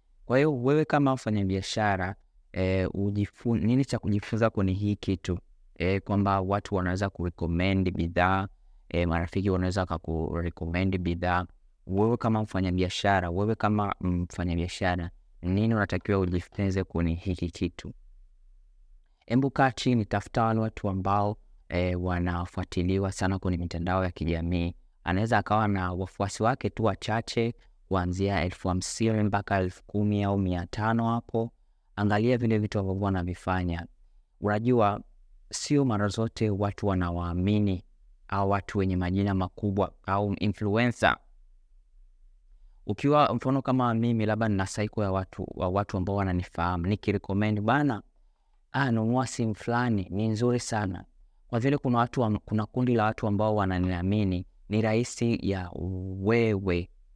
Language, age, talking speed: Swahili, 30-49, 120 wpm